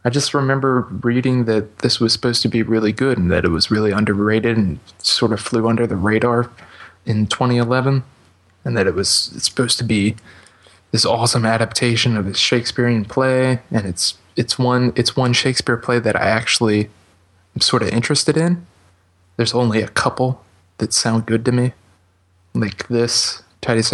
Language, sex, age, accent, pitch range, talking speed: English, male, 20-39, American, 95-120 Hz, 175 wpm